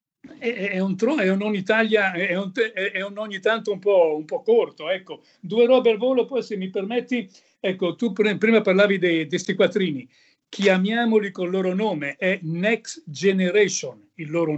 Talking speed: 180 wpm